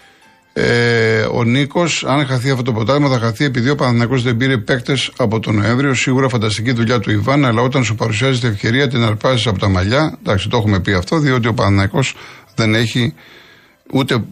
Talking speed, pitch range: 190 wpm, 110-135 Hz